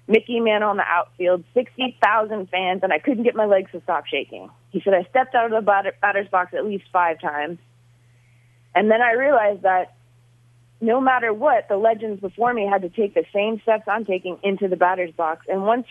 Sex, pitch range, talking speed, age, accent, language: female, 170-225 Hz, 210 wpm, 30-49, American, English